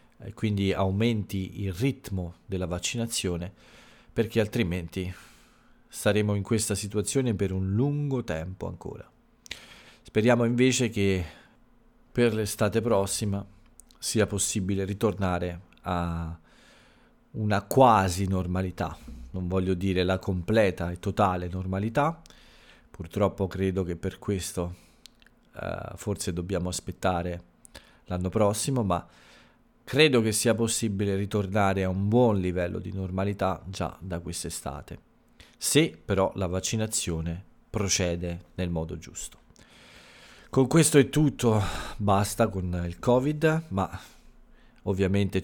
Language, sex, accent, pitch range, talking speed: Italian, male, native, 90-110 Hz, 110 wpm